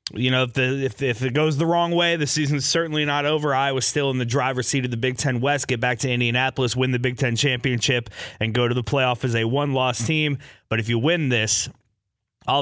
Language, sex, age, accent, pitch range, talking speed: English, male, 30-49, American, 115-145 Hz, 250 wpm